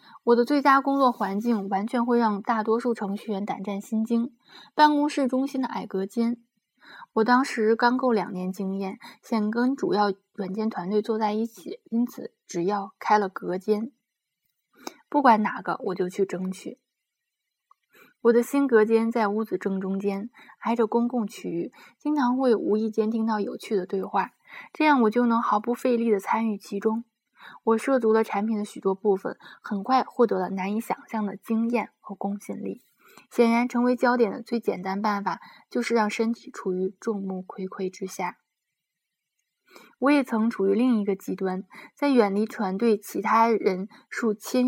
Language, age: Chinese, 20-39